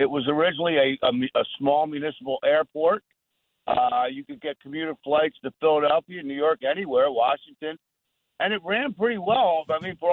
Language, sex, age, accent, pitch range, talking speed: English, male, 50-69, American, 150-195 Hz, 170 wpm